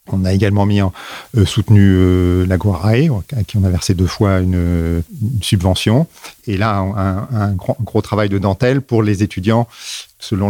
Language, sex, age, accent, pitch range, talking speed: French, male, 40-59, French, 95-110 Hz, 190 wpm